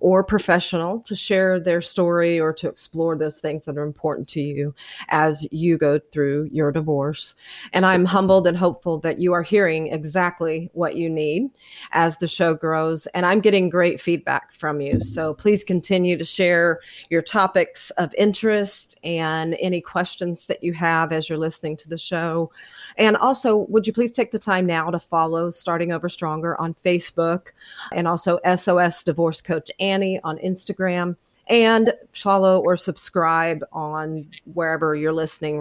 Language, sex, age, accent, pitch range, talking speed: English, female, 40-59, American, 160-185 Hz, 165 wpm